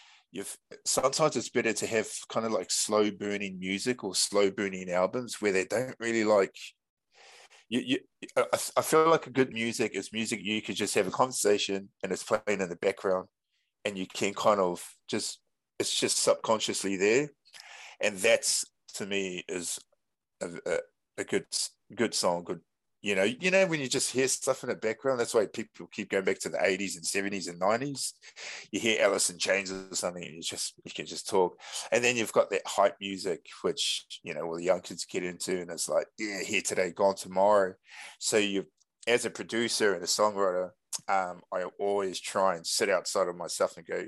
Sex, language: male, English